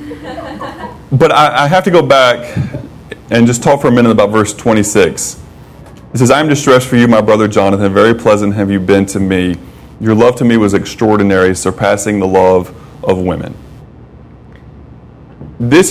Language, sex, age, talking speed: English, male, 20-39, 170 wpm